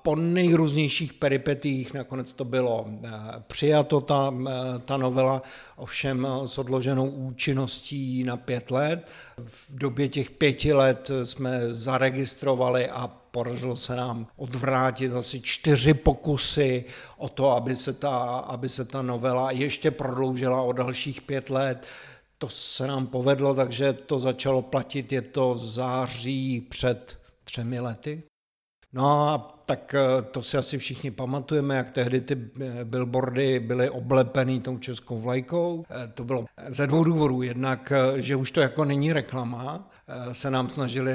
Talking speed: 135 wpm